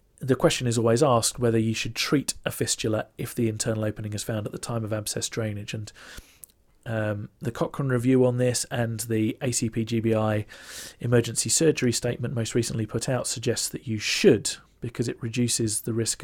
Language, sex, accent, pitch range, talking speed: English, male, British, 110-125 Hz, 185 wpm